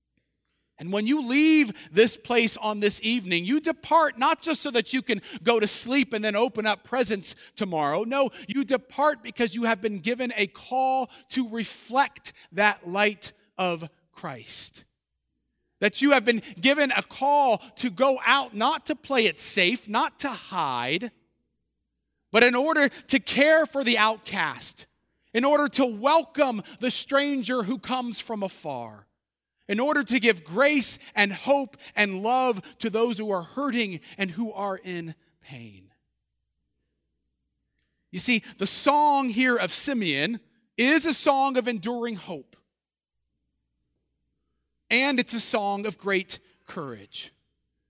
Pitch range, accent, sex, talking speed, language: 195-265 Hz, American, male, 145 wpm, English